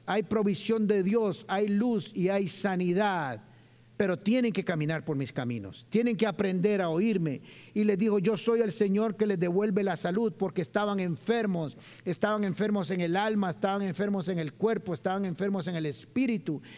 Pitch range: 140-210 Hz